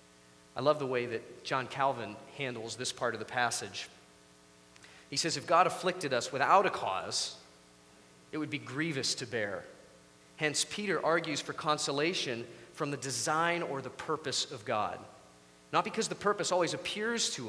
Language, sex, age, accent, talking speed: English, male, 30-49, American, 165 wpm